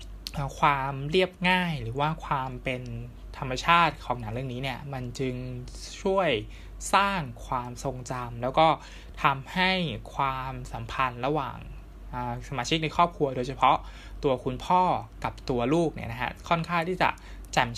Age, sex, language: 20-39, male, Thai